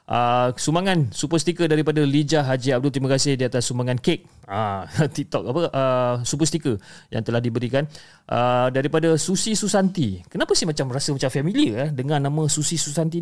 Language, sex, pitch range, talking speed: Malay, male, 120-160 Hz, 180 wpm